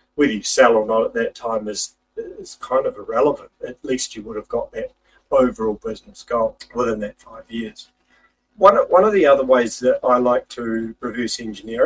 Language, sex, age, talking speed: English, male, 40-59, 195 wpm